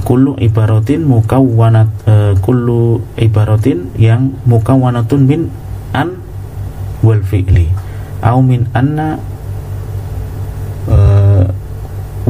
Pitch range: 100-120 Hz